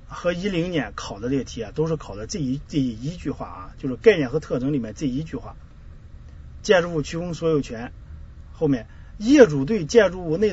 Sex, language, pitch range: male, Chinese, 120-165 Hz